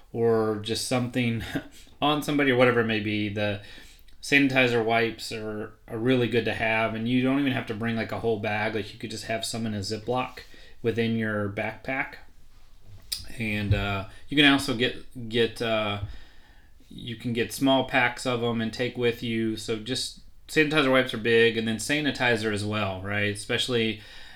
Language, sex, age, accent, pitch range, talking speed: English, male, 30-49, American, 105-120 Hz, 180 wpm